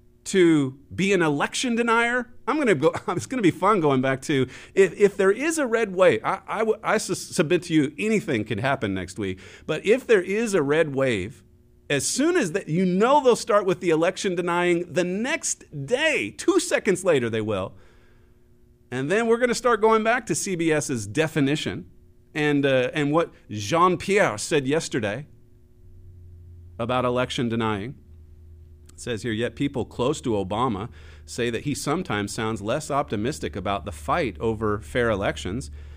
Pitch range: 110-180 Hz